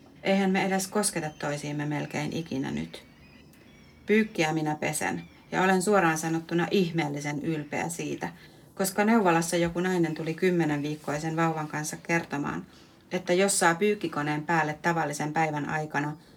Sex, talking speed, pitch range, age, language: female, 130 wpm, 150-180 Hz, 40-59, Finnish